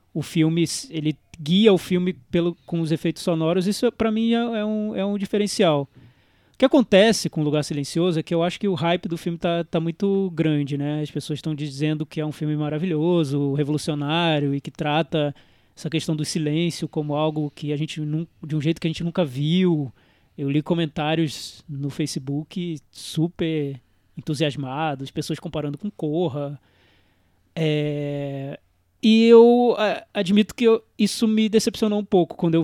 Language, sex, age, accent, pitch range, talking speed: Portuguese, male, 20-39, Brazilian, 150-190 Hz, 175 wpm